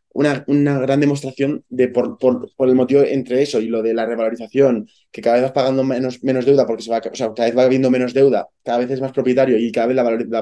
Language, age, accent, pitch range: Spanish, 20-39, Spanish, 120-140 Hz